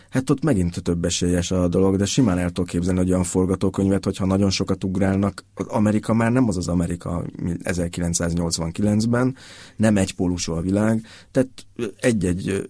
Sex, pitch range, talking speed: male, 90-100 Hz, 145 wpm